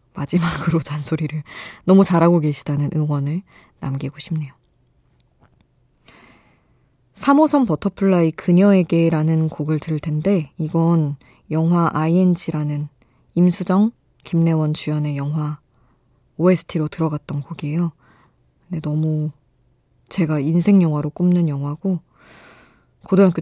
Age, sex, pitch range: 20-39, female, 145-175 Hz